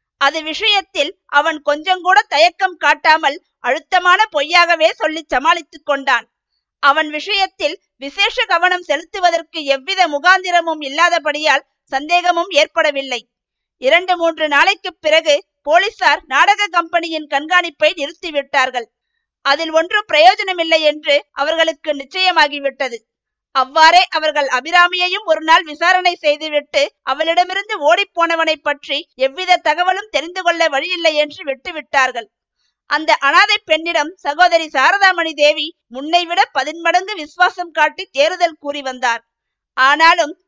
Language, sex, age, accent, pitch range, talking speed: Tamil, female, 50-69, native, 285-355 Hz, 105 wpm